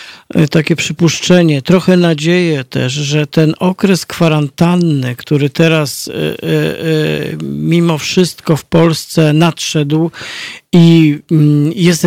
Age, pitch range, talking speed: 40-59, 155-175 Hz, 90 wpm